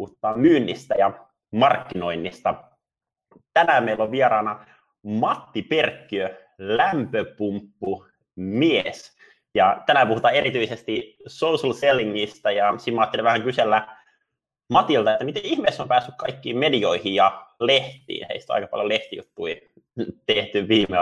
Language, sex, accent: Finnish, male, native